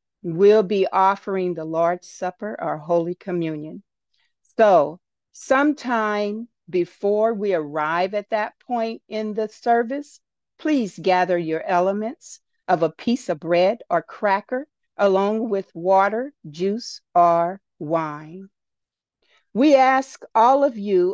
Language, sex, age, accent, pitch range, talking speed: English, female, 50-69, American, 180-235 Hz, 120 wpm